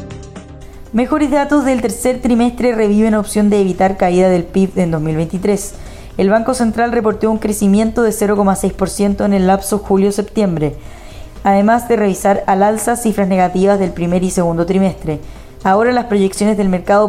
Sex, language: female, Spanish